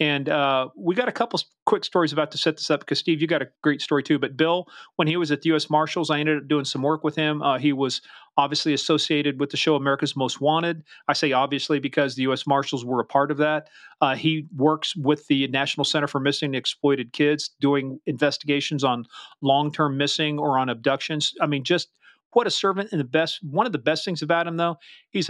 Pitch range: 140-170 Hz